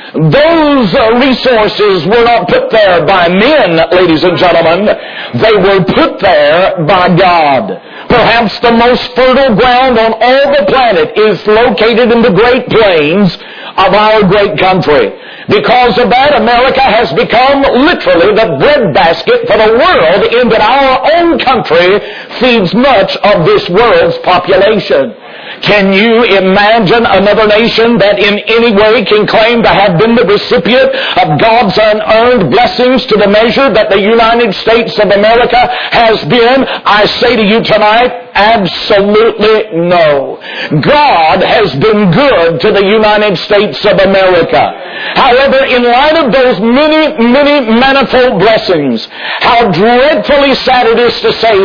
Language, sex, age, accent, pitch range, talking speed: English, male, 50-69, American, 205-255 Hz, 145 wpm